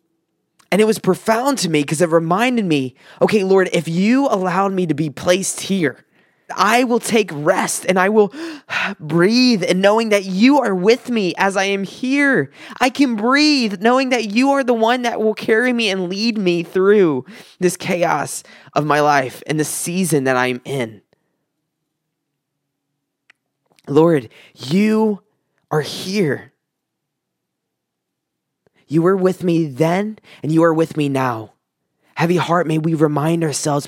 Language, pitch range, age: English, 160-210 Hz, 20-39